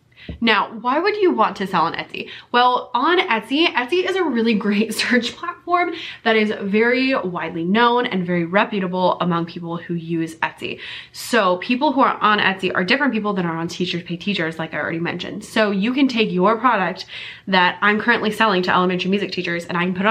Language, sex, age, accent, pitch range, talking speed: English, female, 20-39, American, 180-225 Hz, 210 wpm